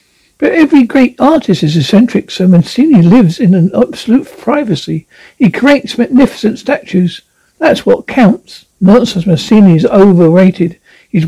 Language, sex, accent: English, male, British